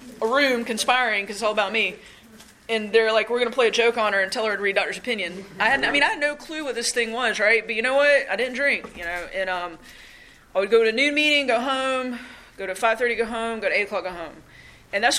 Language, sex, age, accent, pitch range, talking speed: English, female, 20-39, American, 190-240 Hz, 280 wpm